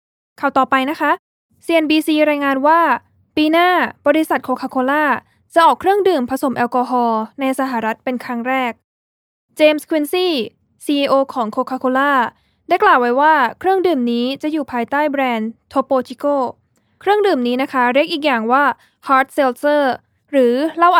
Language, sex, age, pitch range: Thai, female, 10-29, 245-315 Hz